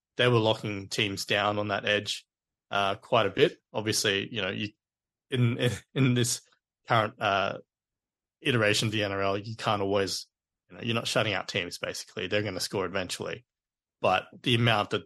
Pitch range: 100-115 Hz